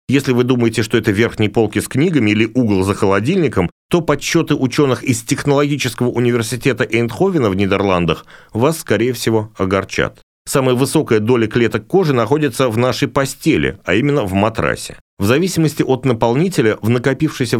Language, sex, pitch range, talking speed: Russian, male, 110-140 Hz, 155 wpm